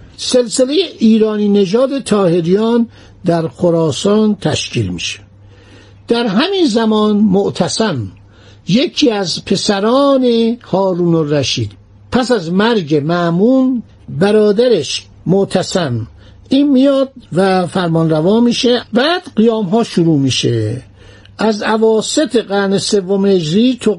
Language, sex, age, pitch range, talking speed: Persian, male, 60-79, 155-230 Hz, 95 wpm